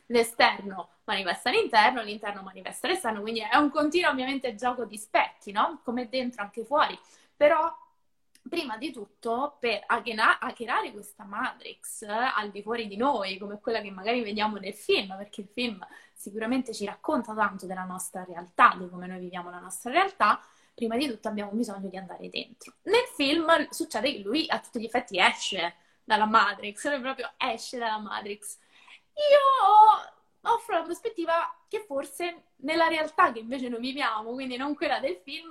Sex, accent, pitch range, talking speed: female, native, 215-295 Hz, 165 wpm